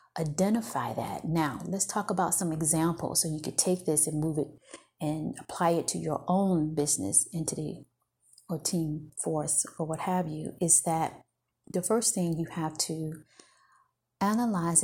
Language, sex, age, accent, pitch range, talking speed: English, female, 30-49, American, 155-185 Hz, 160 wpm